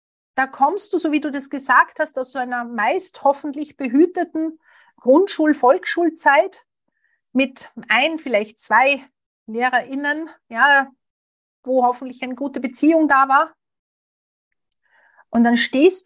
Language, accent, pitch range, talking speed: German, Austrian, 235-300 Hz, 120 wpm